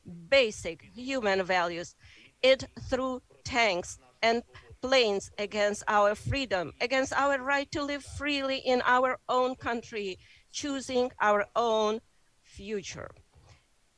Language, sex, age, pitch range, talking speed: English, female, 40-59, 210-275 Hz, 105 wpm